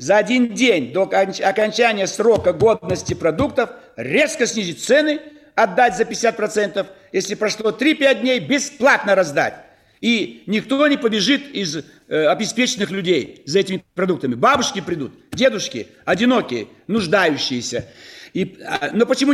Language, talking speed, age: Russian, 115 wpm, 50-69